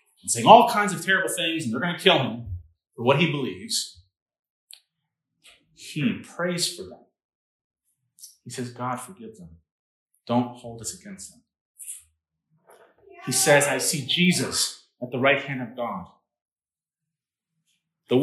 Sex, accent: male, American